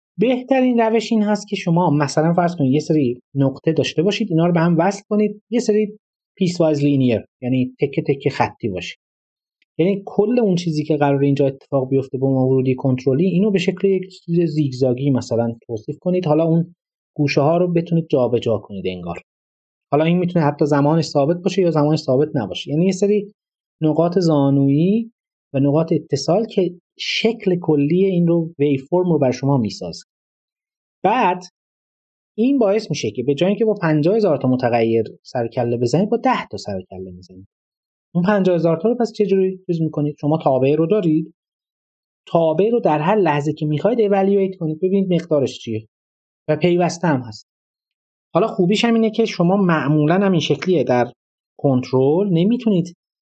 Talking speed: 165 wpm